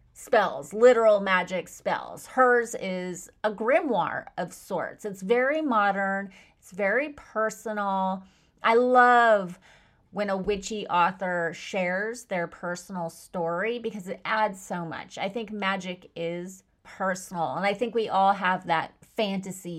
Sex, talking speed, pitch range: female, 135 wpm, 175-225 Hz